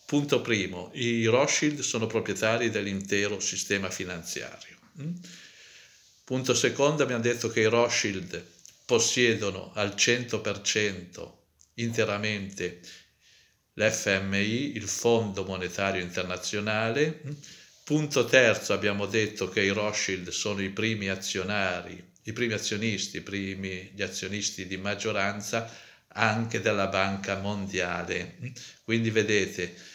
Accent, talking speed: native, 100 wpm